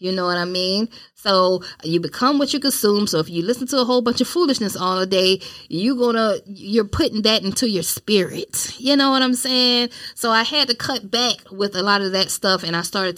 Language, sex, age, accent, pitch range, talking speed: English, female, 10-29, American, 170-230 Hz, 230 wpm